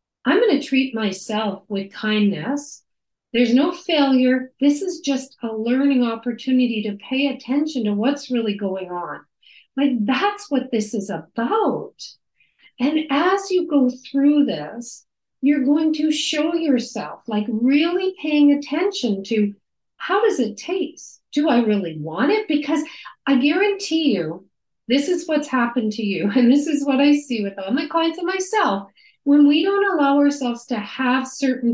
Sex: female